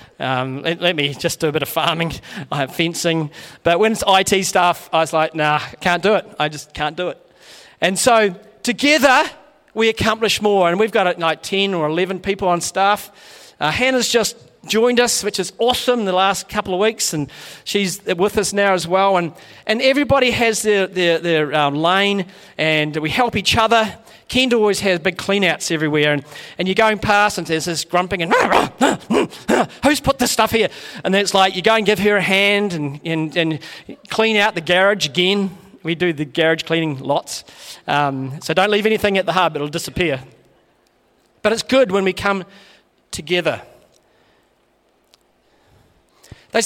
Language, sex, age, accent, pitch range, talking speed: English, male, 40-59, Australian, 165-210 Hz, 195 wpm